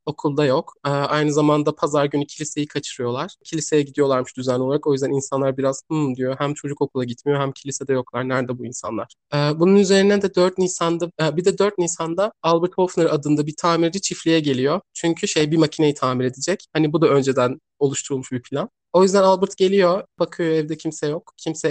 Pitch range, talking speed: 145-180 Hz, 180 wpm